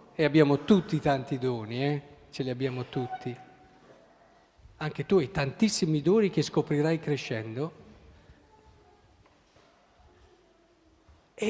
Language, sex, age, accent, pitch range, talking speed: Italian, male, 50-69, native, 140-210 Hz, 100 wpm